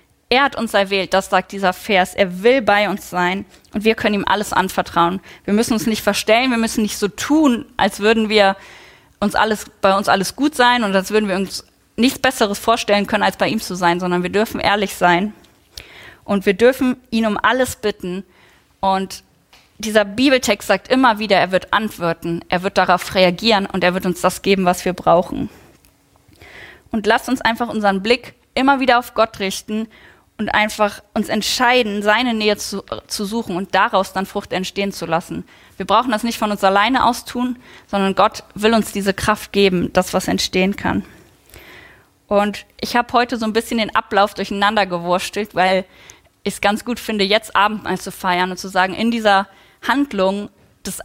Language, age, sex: German, 20-39, female